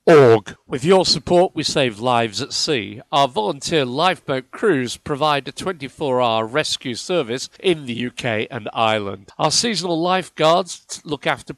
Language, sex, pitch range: English, male, 125-180 Hz